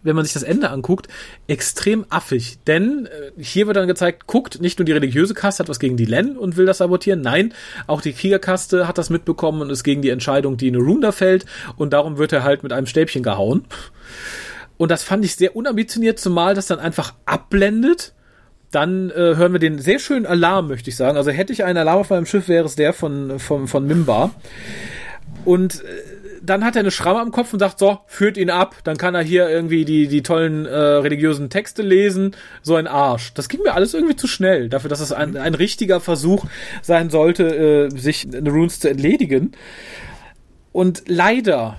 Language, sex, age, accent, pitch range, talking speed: German, male, 40-59, German, 145-190 Hz, 210 wpm